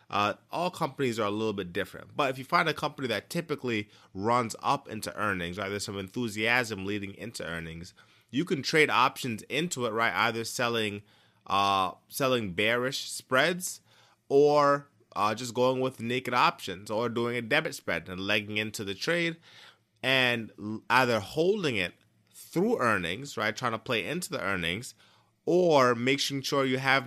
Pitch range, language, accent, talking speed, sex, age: 105-135 Hz, English, American, 165 wpm, male, 20-39